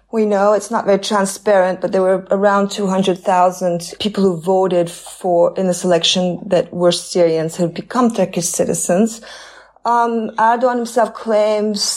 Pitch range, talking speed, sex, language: 180-225 Hz, 145 wpm, female, English